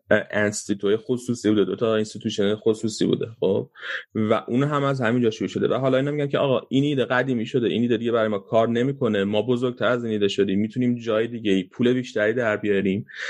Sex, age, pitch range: male, 30-49, 105-135 Hz